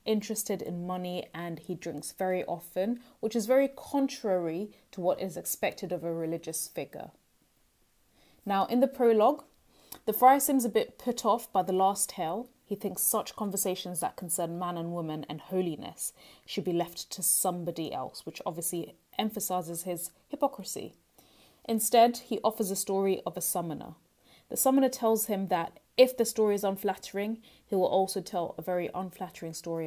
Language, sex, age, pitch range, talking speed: English, female, 20-39, 175-220 Hz, 165 wpm